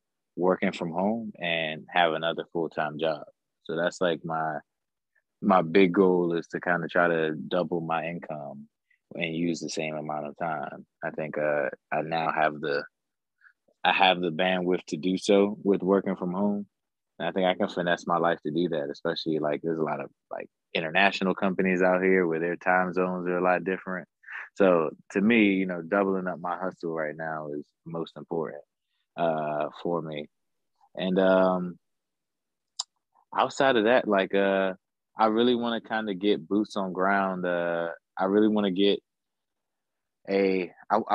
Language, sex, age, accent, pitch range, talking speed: English, male, 20-39, American, 85-100 Hz, 175 wpm